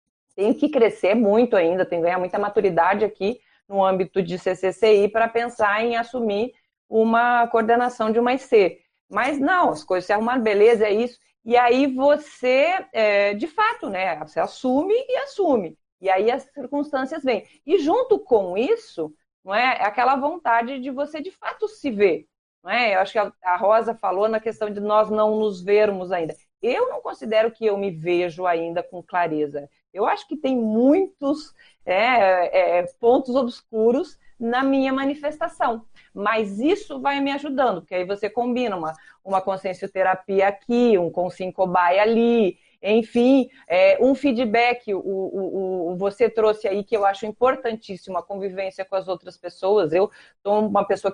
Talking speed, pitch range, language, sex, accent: 165 wpm, 190-255 Hz, Portuguese, female, Brazilian